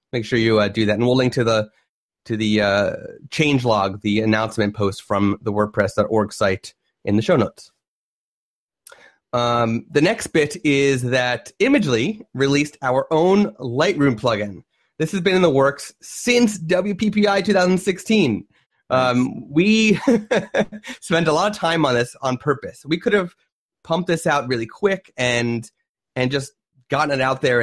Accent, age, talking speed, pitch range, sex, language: American, 30-49, 160 wpm, 115-155 Hz, male, English